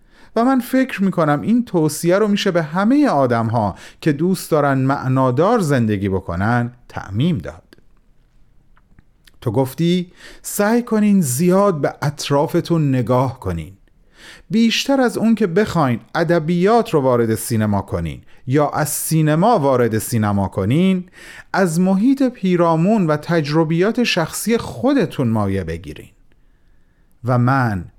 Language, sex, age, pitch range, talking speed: Persian, male, 40-59, 115-180 Hz, 120 wpm